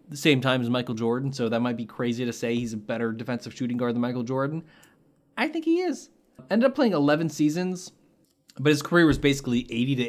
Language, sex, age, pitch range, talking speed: English, male, 20-39, 120-150 Hz, 225 wpm